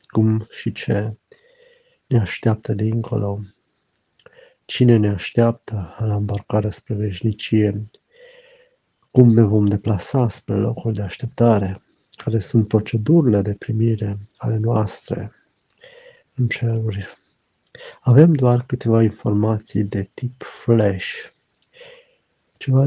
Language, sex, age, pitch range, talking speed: Romanian, male, 50-69, 105-125 Hz, 100 wpm